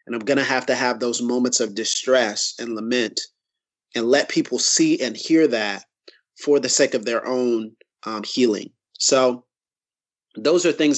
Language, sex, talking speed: English, male, 175 wpm